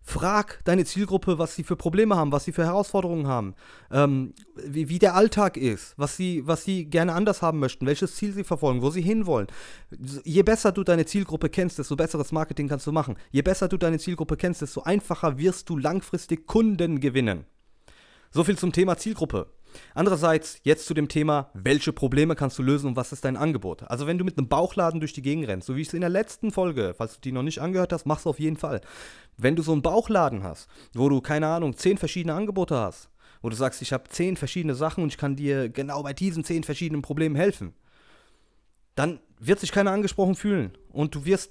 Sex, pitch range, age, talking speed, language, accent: male, 145-190 Hz, 30-49, 220 wpm, German, German